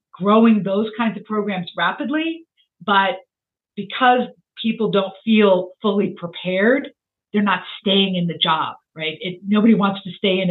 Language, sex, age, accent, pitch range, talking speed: English, female, 50-69, American, 175-210 Hz, 150 wpm